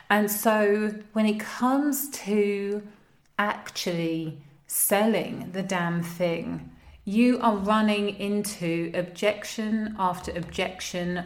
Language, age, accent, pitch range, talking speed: English, 30-49, British, 185-225 Hz, 95 wpm